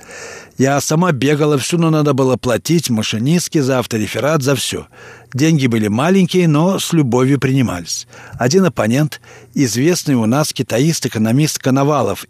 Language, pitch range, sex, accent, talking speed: Russian, 125-155 Hz, male, native, 130 wpm